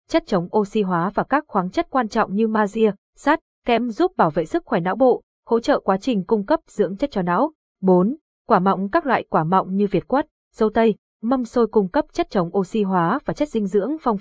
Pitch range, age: 190-245 Hz, 20-39